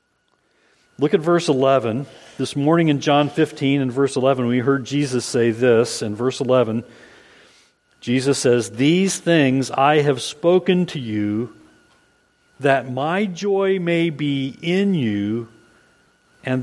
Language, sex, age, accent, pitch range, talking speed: English, male, 50-69, American, 125-170 Hz, 135 wpm